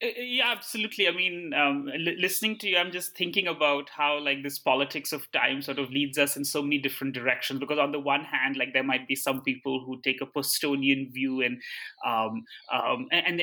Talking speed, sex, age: 200 wpm, male, 20-39